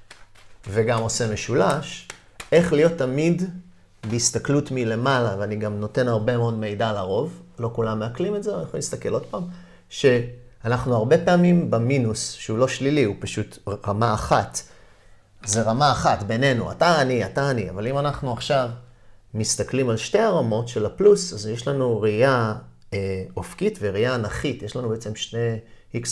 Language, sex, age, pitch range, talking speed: Hebrew, male, 30-49, 100-125 Hz, 155 wpm